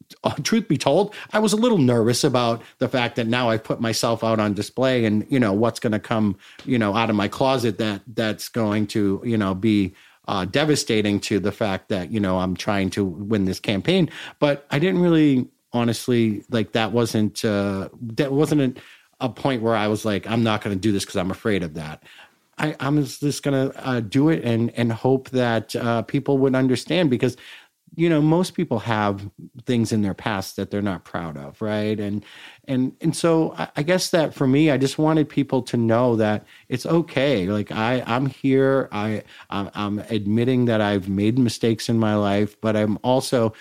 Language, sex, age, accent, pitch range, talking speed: English, male, 40-59, American, 105-135 Hz, 205 wpm